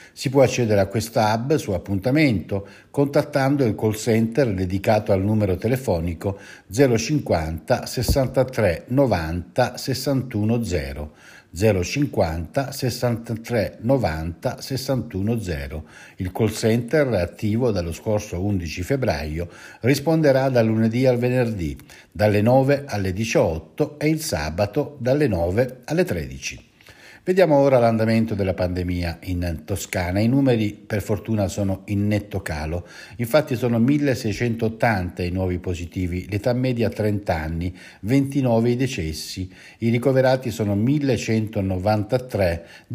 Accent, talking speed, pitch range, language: native, 115 wpm, 95-130 Hz, Italian